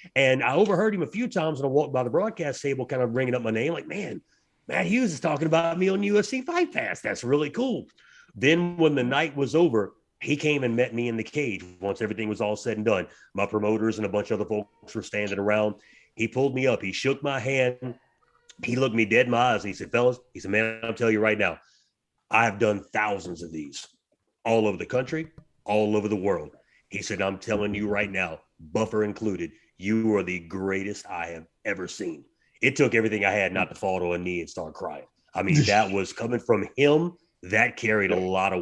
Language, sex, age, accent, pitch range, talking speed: English, male, 30-49, American, 105-140 Hz, 235 wpm